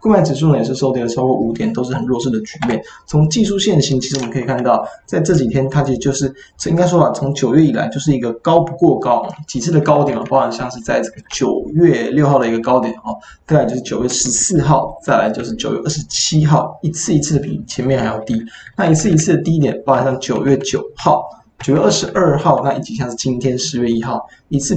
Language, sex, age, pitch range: Chinese, male, 20-39, 125-155 Hz